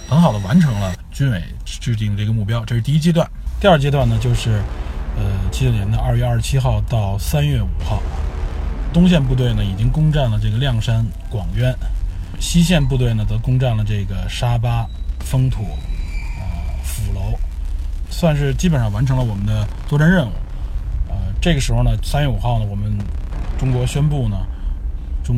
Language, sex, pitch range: Chinese, male, 95-130 Hz